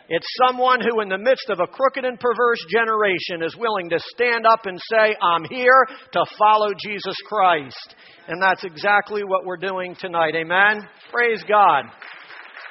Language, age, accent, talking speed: English, 50-69, American, 165 wpm